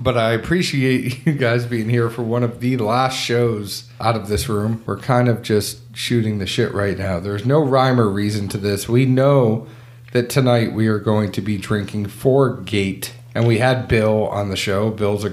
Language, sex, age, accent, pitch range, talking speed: English, male, 40-59, American, 105-125 Hz, 210 wpm